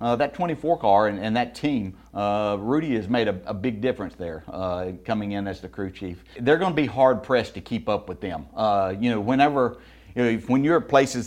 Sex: male